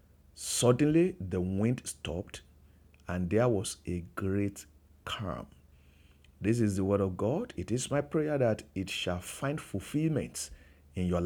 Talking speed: 145 wpm